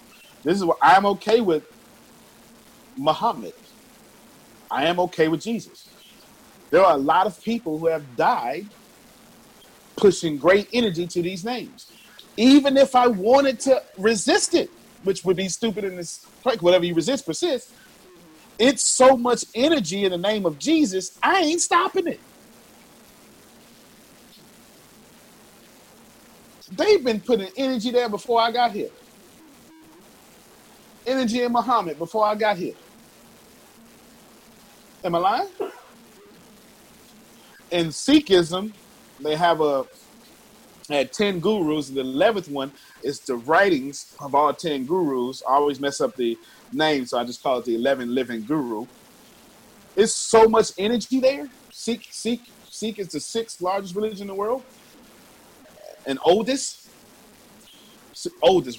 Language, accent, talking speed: English, American, 130 wpm